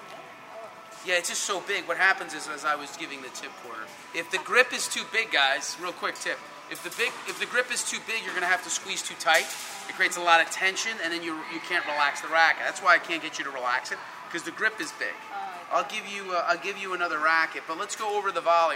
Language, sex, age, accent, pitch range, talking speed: English, male, 30-49, American, 150-195 Hz, 270 wpm